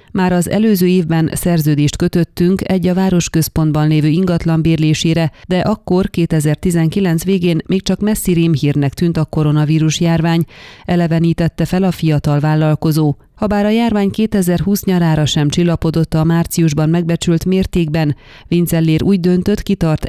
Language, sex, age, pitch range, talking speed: Hungarian, female, 30-49, 155-185 Hz, 130 wpm